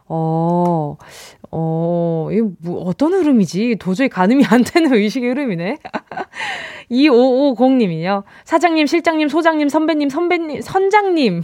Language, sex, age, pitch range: Korean, female, 20-39, 185-315 Hz